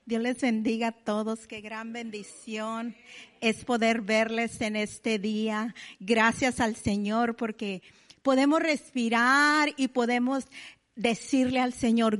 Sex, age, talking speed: female, 40-59, 125 wpm